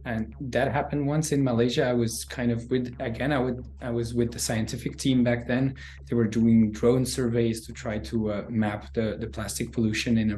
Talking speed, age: 220 wpm, 20-39